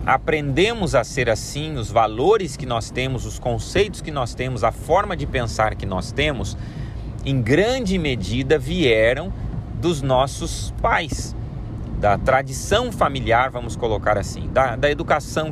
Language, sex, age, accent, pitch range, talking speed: Portuguese, male, 40-59, Brazilian, 115-155 Hz, 145 wpm